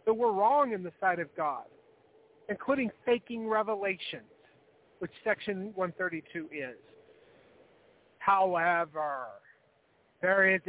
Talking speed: 100 wpm